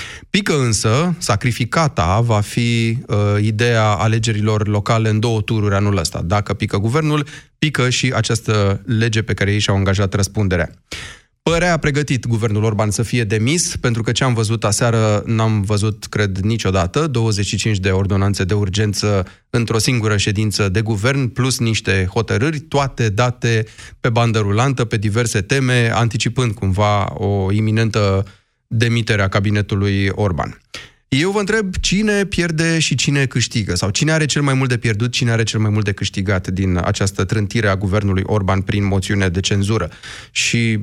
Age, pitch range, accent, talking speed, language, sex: 30-49, 105-125 Hz, native, 155 wpm, Romanian, male